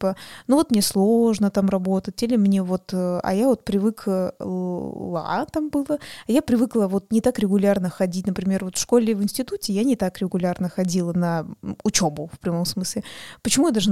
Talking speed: 180 wpm